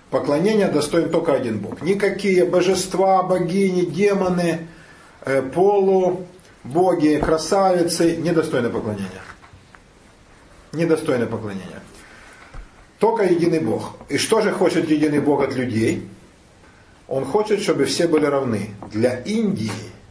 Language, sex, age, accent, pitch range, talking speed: Russian, male, 40-59, native, 130-185 Hz, 105 wpm